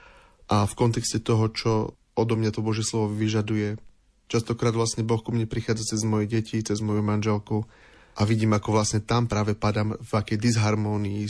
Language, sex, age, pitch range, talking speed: Slovak, male, 30-49, 110-120 Hz, 175 wpm